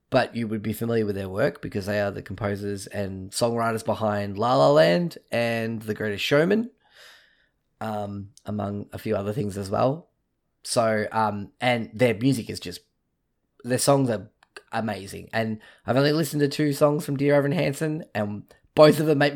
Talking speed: 180 wpm